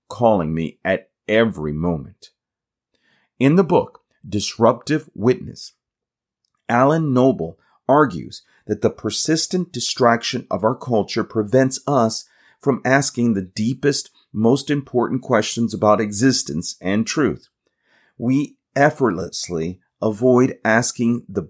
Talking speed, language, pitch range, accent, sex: 105 wpm, English, 110-140 Hz, American, male